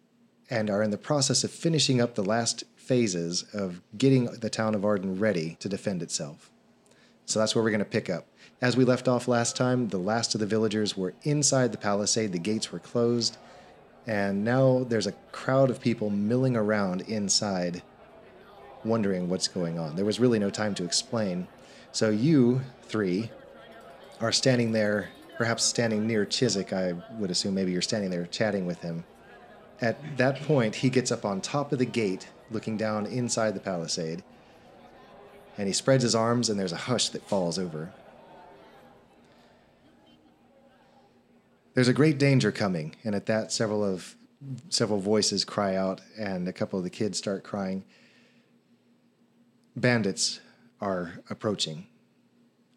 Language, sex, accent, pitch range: English, male, American, 100-125 Hz